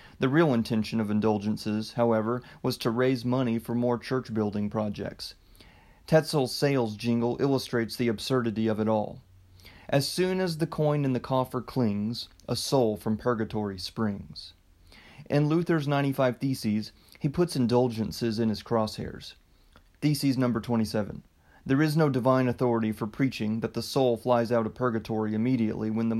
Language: English